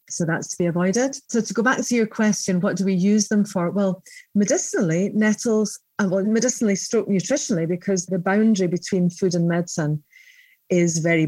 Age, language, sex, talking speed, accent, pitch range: 40-59, English, female, 180 wpm, British, 180-220 Hz